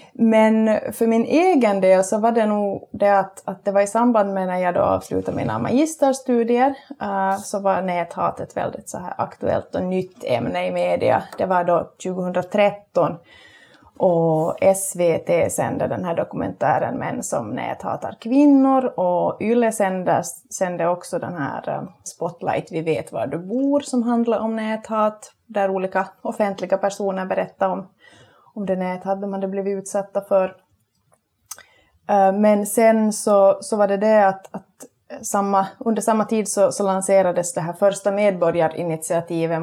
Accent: native